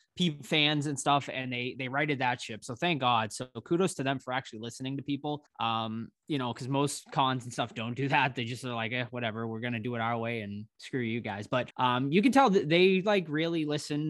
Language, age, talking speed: English, 20-39, 245 wpm